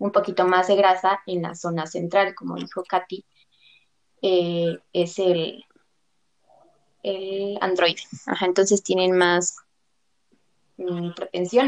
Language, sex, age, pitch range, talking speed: Spanish, female, 20-39, 175-195 Hz, 120 wpm